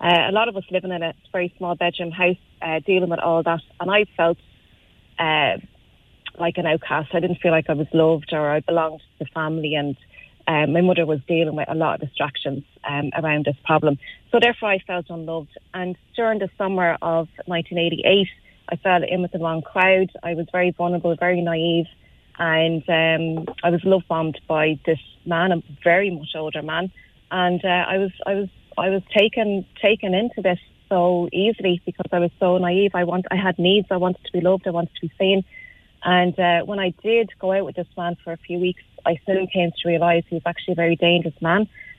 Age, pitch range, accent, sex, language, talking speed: 30-49, 165-185 Hz, Irish, female, English, 215 wpm